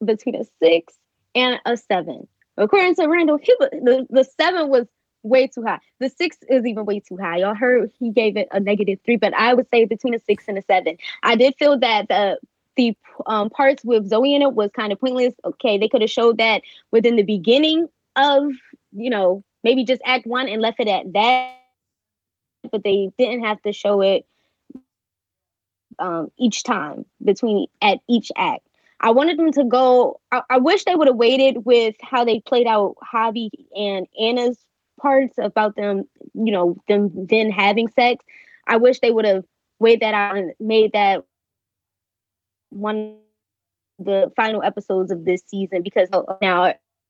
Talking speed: 185 wpm